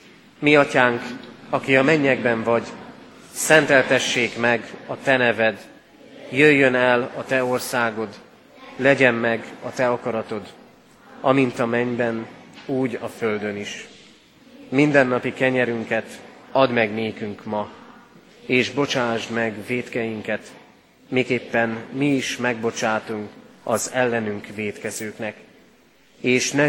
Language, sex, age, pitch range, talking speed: Hungarian, male, 30-49, 115-135 Hz, 110 wpm